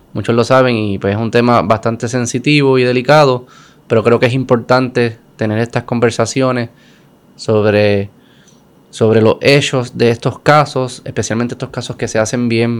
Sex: male